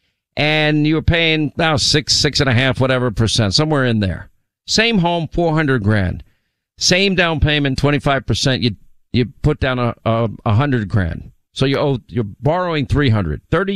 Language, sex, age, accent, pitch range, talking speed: English, male, 50-69, American, 120-165 Hz, 185 wpm